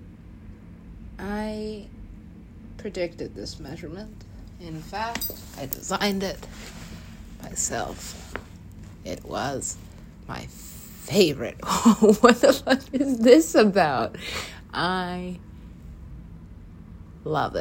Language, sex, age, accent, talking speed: English, female, 30-49, American, 75 wpm